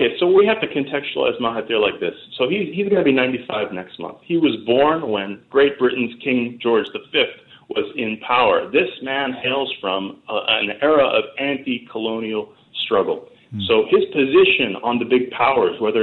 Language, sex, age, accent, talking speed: English, male, 40-59, American, 175 wpm